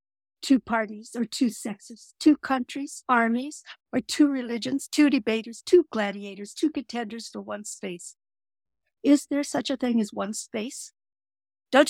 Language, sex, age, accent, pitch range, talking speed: English, female, 60-79, American, 195-245 Hz, 145 wpm